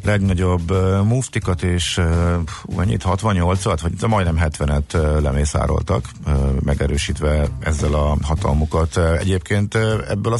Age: 50-69